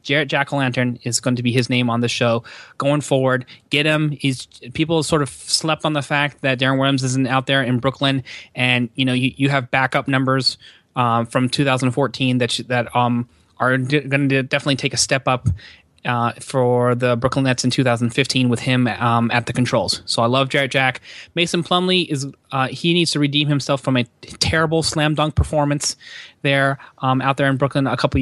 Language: English